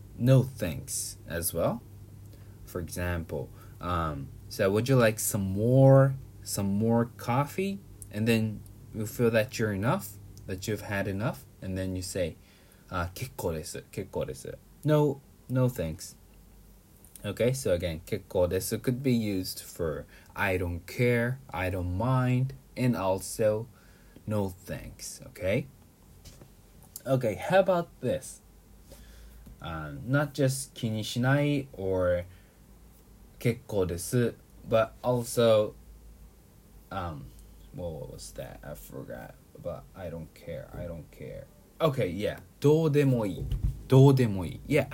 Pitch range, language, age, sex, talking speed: 100-130 Hz, English, 20-39, male, 115 wpm